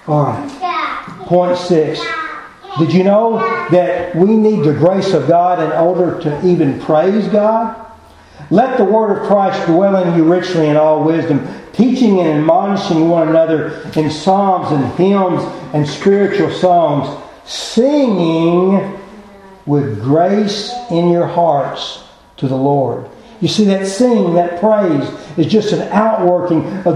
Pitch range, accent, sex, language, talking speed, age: 155-200 Hz, American, male, English, 140 wpm, 50-69